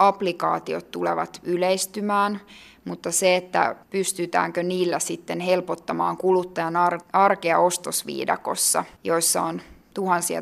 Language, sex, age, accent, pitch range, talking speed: Finnish, female, 20-39, native, 170-195 Hz, 90 wpm